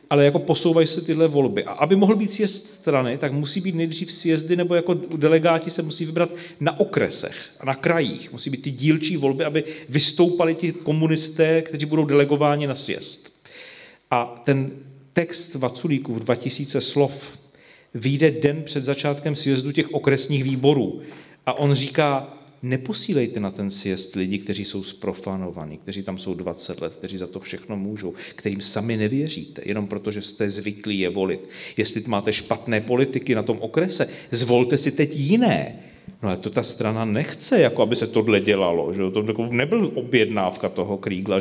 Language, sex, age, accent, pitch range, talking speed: Czech, male, 40-59, native, 115-165 Hz, 165 wpm